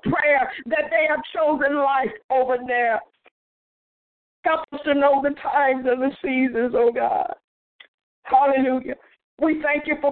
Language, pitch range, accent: English, 290-315 Hz, American